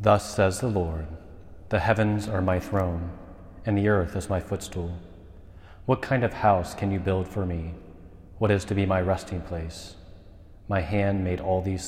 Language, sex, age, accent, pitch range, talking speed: English, male, 30-49, American, 90-100 Hz, 180 wpm